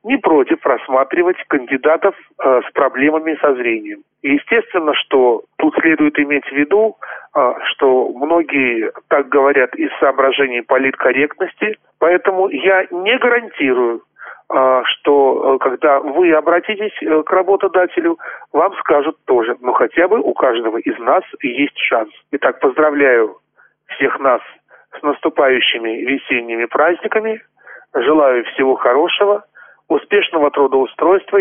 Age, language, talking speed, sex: 40-59, Russian, 115 wpm, male